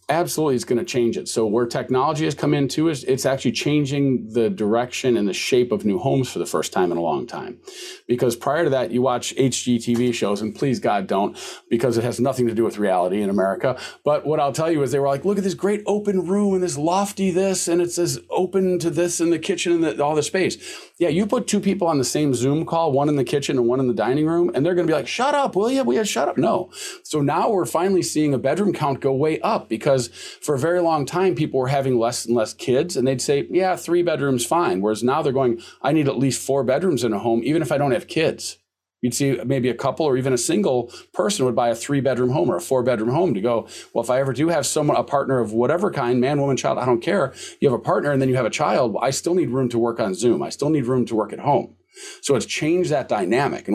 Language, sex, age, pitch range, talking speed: English, male, 40-59, 125-175 Hz, 270 wpm